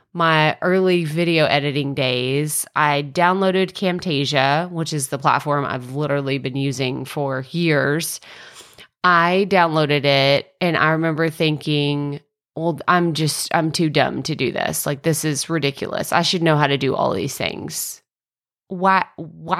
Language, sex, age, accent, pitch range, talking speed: English, female, 30-49, American, 145-185 Hz, 145 wpm